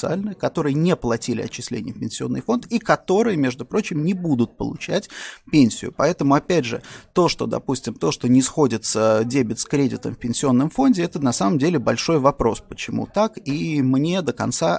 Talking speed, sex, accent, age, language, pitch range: 175 wpm, male, native, 30-49, Russian, 125-155 Hz